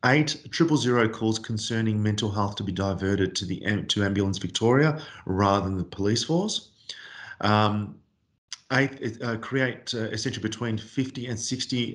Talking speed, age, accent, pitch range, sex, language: 150 wpm, 40-59, Australian, 100-115 Hz, male, English